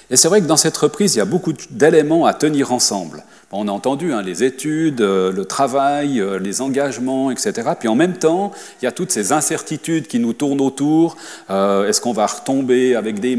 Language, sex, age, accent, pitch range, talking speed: French, male, 40-59, French, 115-155 Hz, 210 wpm